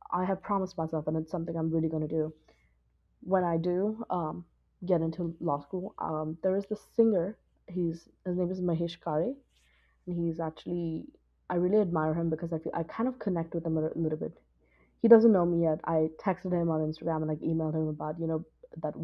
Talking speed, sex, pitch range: 215 wpm, female, 160-180 Hz